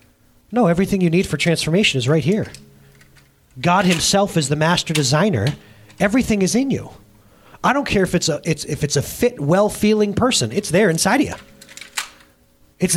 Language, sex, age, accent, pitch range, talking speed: English, male, 30-49, American, 105-175 Hz, 175 wpm